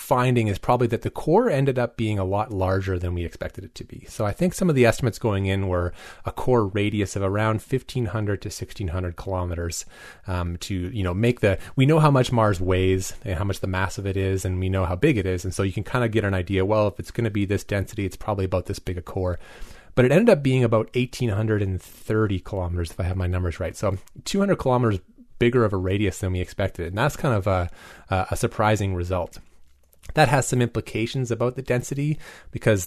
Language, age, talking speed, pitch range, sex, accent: English, 30-49, 235 wpm, 95-115 Hz, male, American